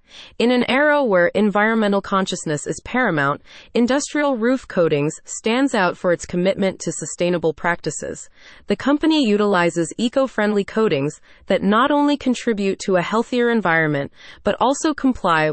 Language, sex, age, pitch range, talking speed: English, female, 30-49, 170-230 Hz, 135 wpm